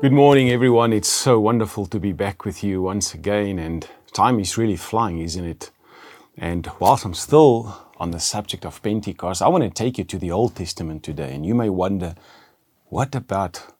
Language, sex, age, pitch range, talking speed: English, male, 40-59, 95-120 Hz, 195 wpm